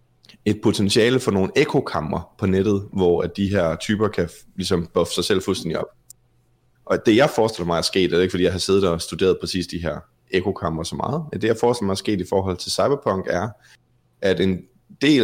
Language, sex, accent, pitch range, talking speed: Danish, male, native, 90-120 Hz, 220 wpm